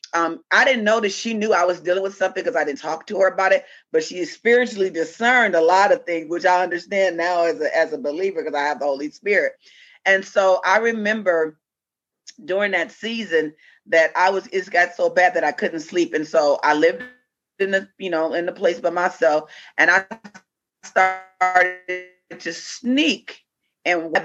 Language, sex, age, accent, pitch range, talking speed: English, female, 40-59, American, 165-200 Hz, 195 wpm